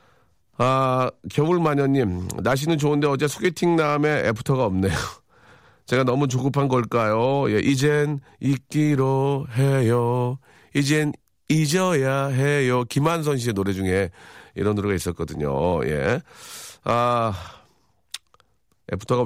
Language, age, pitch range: Korean, 40-59, 100-140 Hz